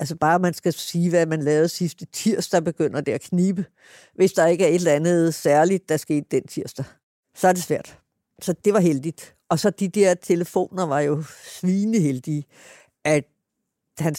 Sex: female